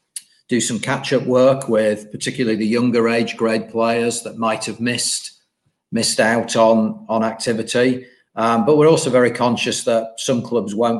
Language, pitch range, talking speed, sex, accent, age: English, 110-125 Hz, 160 wpm, male, British, 40-59